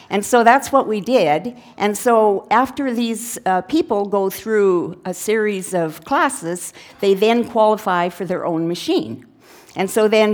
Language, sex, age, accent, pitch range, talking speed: English, female, 50-69, American, 180-250 Hz, 165 wpm